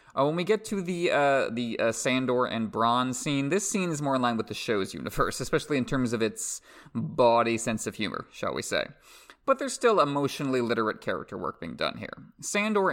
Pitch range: 110-140 Hz